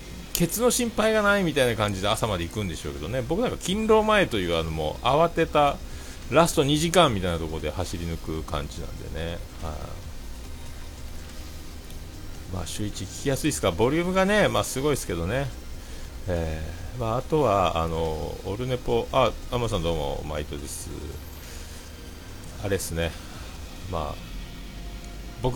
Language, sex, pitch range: Japanese, male, 80-115 Hz